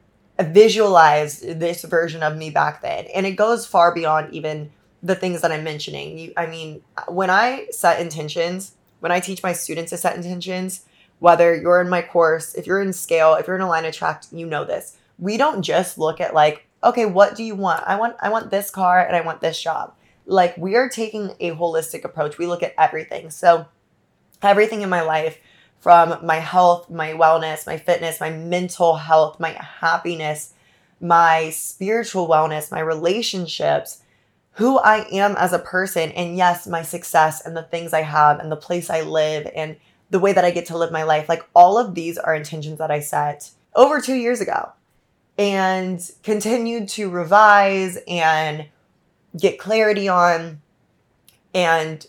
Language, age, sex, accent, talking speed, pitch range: English, 20-39, female, American, 185 wpm, 160-185 Hz